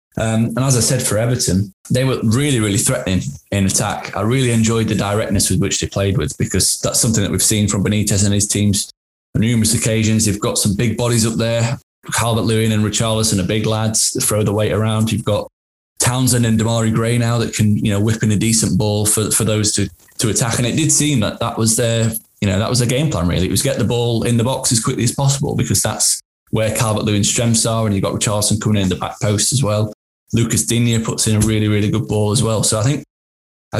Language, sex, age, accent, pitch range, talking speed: English, male, 10-29, British, 100-120 Hz, 245 wpm